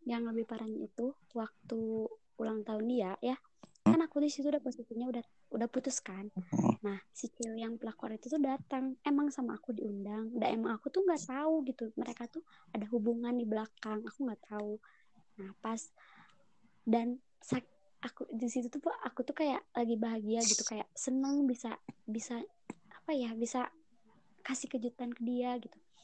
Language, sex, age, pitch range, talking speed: Indonesian, male, 20-39, 220-260 Hz, 165 wpm